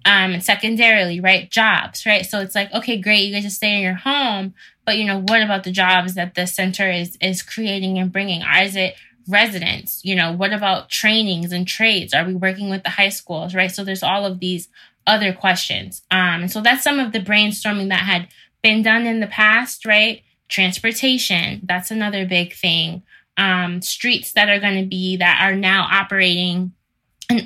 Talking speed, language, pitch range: 200 wpm, English, 185-210 Hz